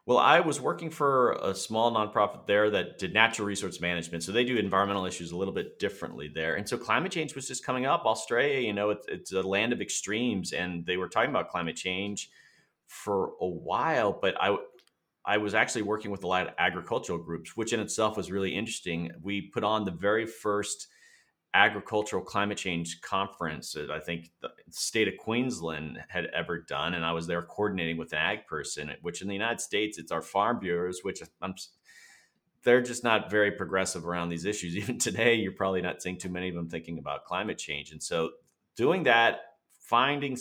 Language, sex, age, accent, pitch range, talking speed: English, male, 30-49, American, 90-115 Hz, 200 wpm